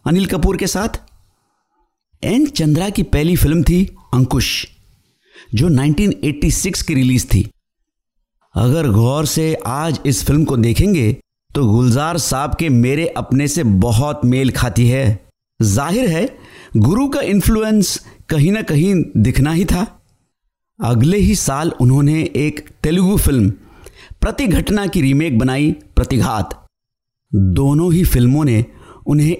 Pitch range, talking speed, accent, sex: 120-170 Hz, 130 wpm, native, male